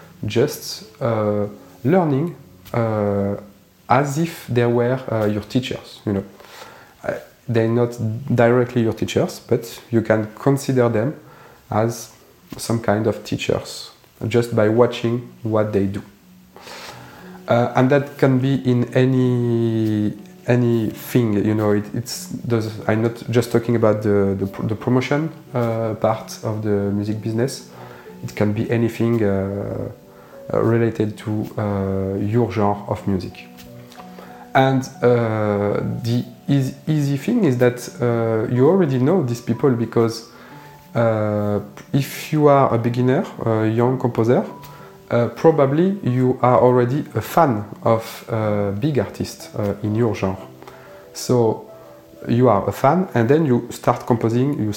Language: English